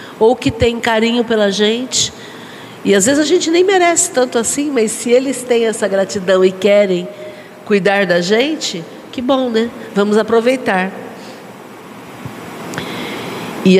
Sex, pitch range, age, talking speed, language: female, 200-235 Hz, 40-59, 140 wpm, Portuguese